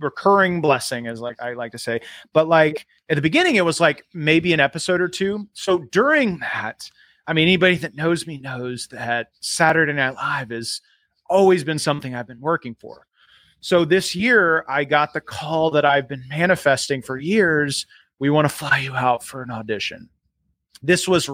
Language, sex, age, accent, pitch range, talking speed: English, male, 30-49, American, 135-175 Hz, 190 wpm